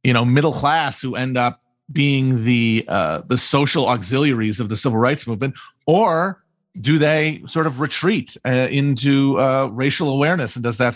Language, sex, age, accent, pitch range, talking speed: English, male, 40-59, American, 125-155 Hz, 175 wpm